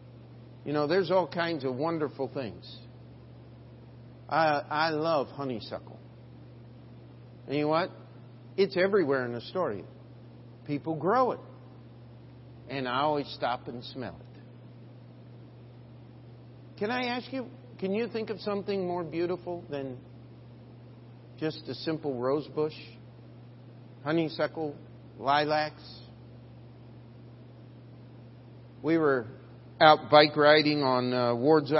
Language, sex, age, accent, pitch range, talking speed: English, male, 50-69, American, 120-155 Hz, 110 wpm